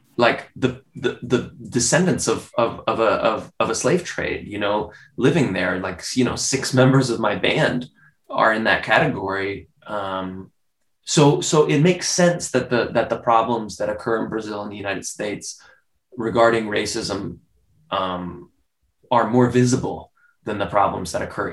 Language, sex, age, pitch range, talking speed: English, male, 20-39, 100-130 Hz, 165 wpm